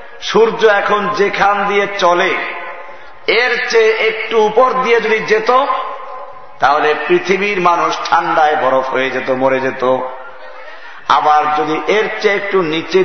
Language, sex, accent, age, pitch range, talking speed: Bengali, male, native, 50-69, 135-220 Hz, 125 wpm